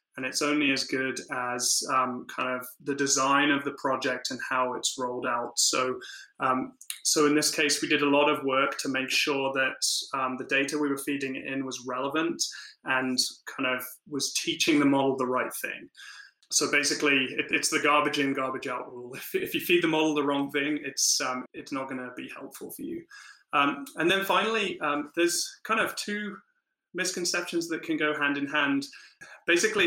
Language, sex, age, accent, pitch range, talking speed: English, male, 20-39, British, 135-175 Hz, 200 wpm